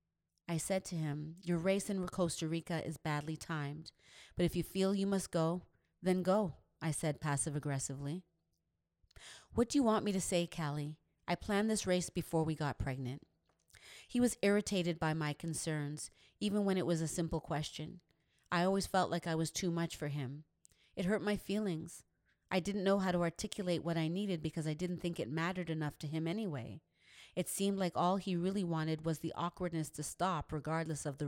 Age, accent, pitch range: 30-49, American, 150-180 Hz